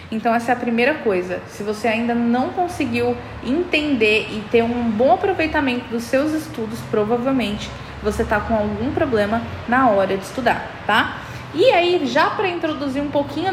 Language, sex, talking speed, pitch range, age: Portuguese, female, 170 wpm, 230-275 Hz, 20-39